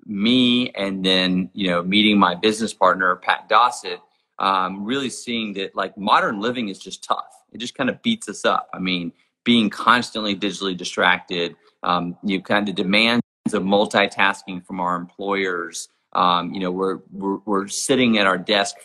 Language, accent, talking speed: English, American, 170 wpm